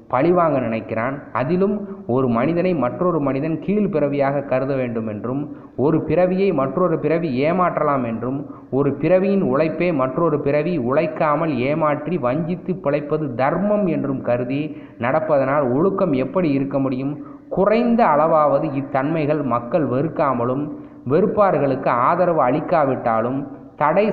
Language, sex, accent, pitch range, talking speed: Tamil, male, native, 130-160 Hz, 110 wpm